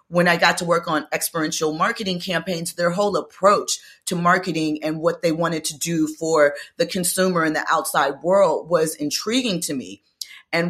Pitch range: 155-185 Hz